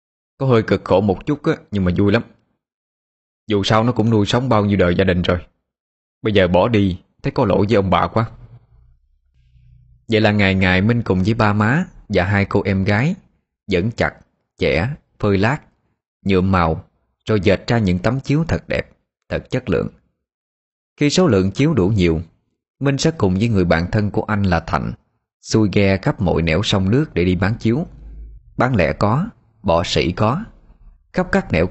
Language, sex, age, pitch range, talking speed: Vietnamese, male, 20-39, 85-120 Hz, 195 wpm